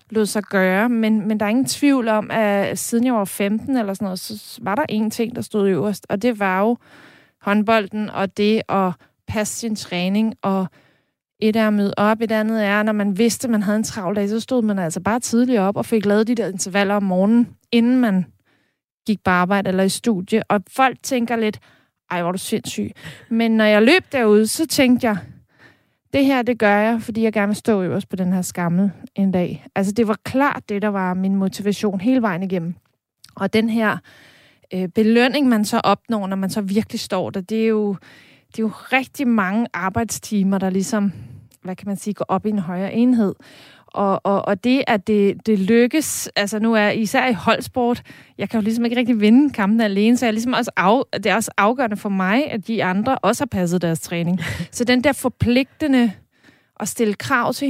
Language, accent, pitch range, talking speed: Danish, native, 195-230 Hz, 215 wpm